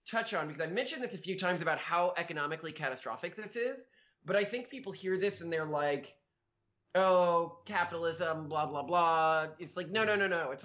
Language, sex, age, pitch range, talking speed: English, male, 20-39, 155-195 Hz, 205 wpm